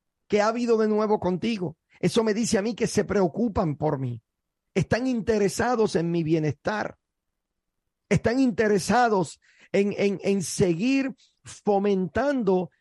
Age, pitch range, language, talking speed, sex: 50-69, 165-215 Hz, Spanish, 125 wpm, male